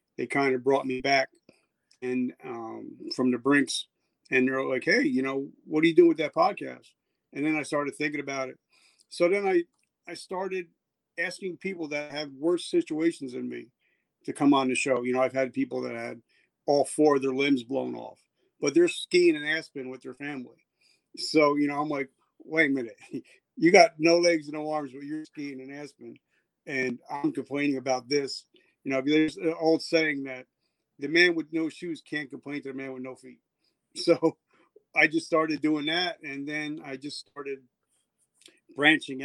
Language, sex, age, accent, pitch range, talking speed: English, male, 50-69, American, 130-155 Hz, 195 wpm